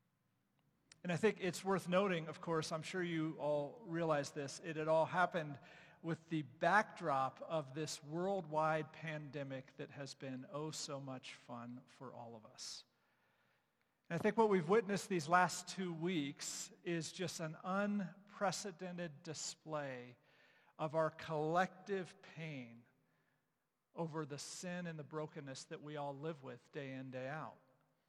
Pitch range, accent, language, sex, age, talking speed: 155-185 Hz, American, English, male, 50-69, 145 wpm